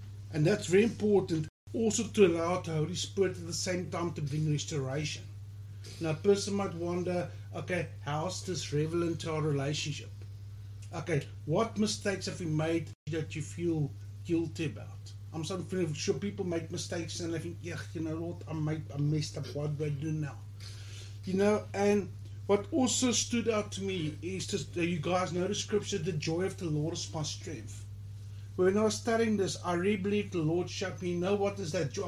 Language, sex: English, male